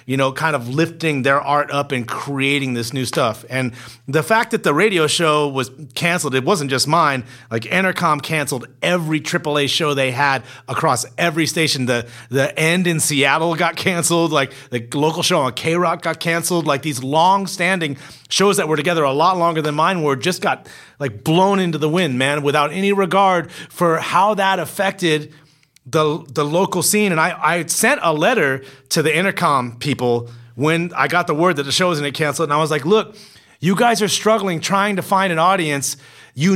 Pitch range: 140-190 Hz